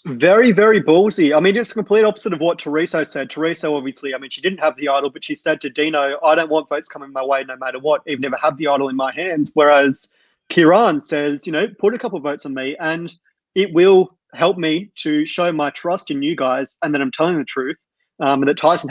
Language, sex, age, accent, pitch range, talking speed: English, male, 20-39, Australian, 145-175 Hz, 255 wpm